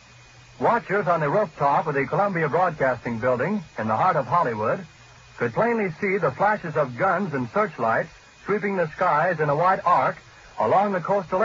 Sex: male